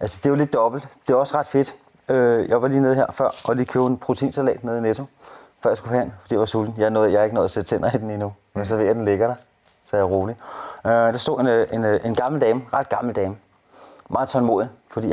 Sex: male